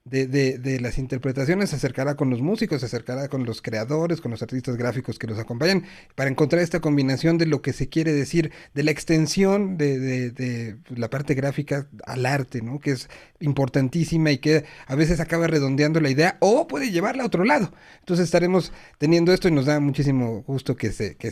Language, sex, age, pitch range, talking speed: Spanish, male, 40-59, 130-175 Hz, 205 wpm